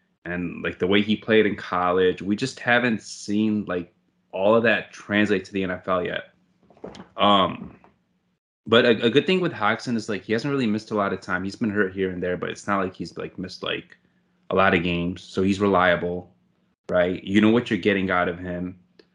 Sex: male